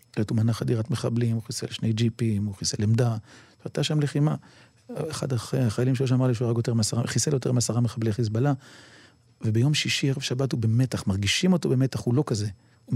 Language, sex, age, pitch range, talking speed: Hebrew, male, 40-59, 110-140 Hz, 175 wpm